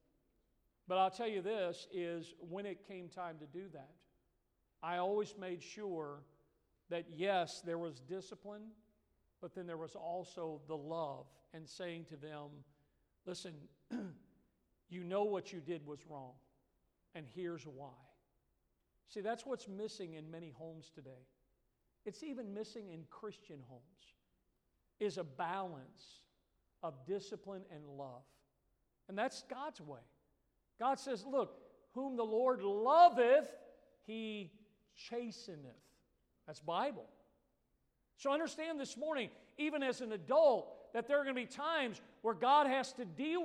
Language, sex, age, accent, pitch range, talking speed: English, male, 50-69, American, 165-235 Hz, 140 wpm